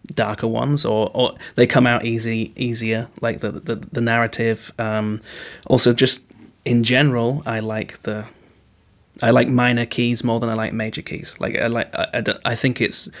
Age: 30-49